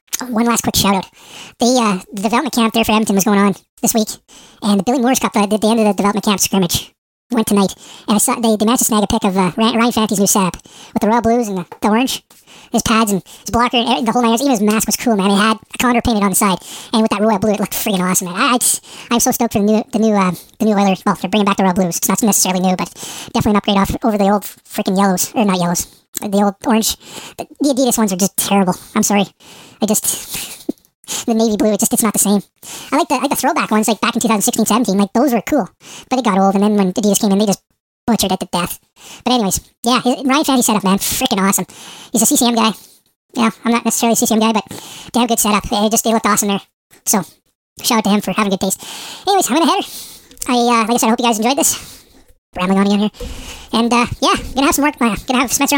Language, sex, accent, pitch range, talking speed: English, male, American, 200-240 Hz, 275 wpm